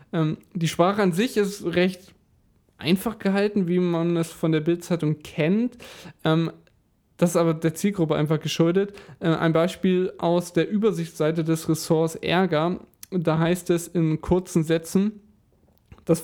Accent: German